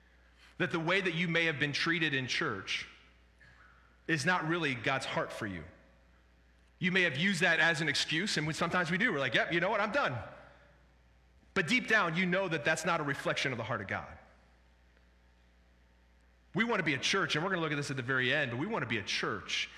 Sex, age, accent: male, 40-59, American